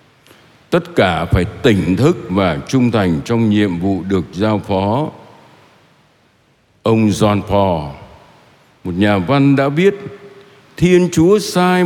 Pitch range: 100-140 Hz